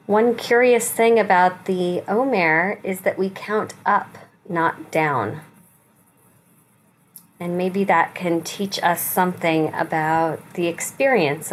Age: 30-49